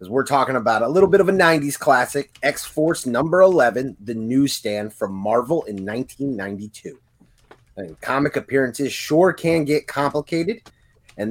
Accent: American